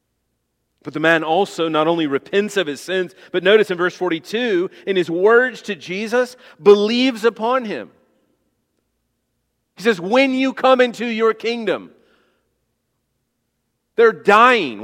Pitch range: 175-240 Hz